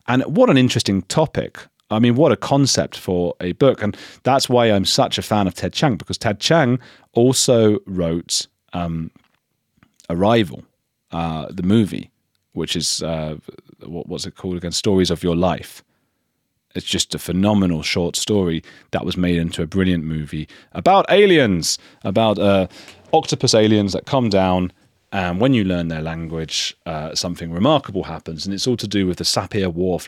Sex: male